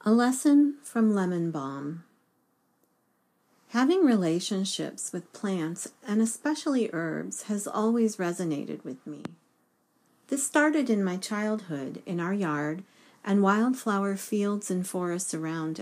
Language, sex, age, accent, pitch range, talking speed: English, female, 40-59, American, 170-230 Hz, 120 wpm